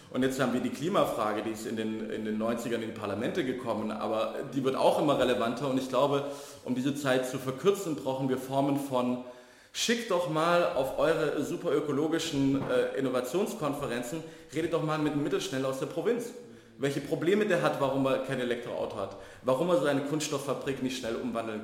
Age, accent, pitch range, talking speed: 40-59, German, 120-140 Hz, 190 wpm